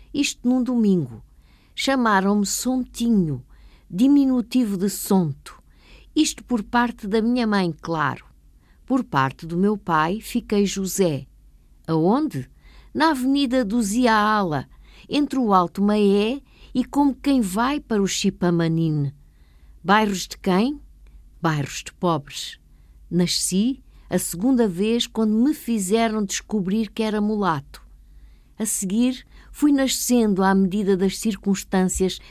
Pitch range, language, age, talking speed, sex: 175-235 Hz, Portuguese, 50-69, 115 wpm, female